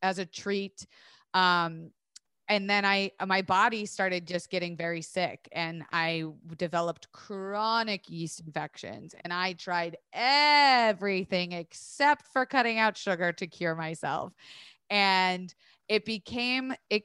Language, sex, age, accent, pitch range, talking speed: English, female, 30-49, American, 175-210 Hz, 125 wpm